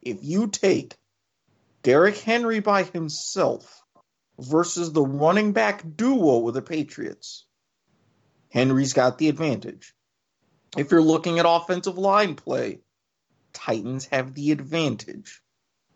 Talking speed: 115 wpm